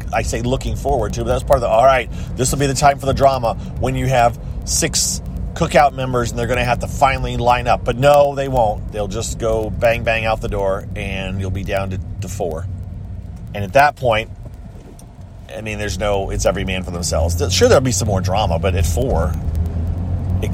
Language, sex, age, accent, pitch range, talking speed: English, male, 40-59, American, 90-125 Hz, 220 wpm